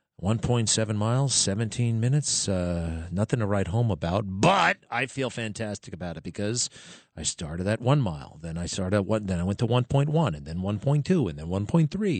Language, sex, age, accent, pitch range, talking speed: English, male, 40-59, American, 95-125 Hz, 220 wpm